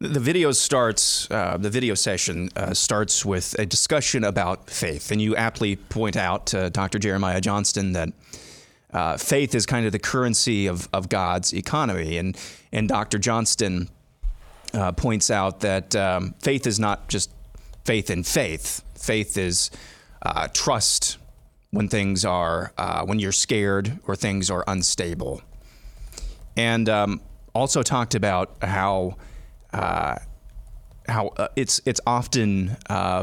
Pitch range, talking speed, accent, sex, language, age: 95-115 Hz, 145 wpm, American, male, English, 30-49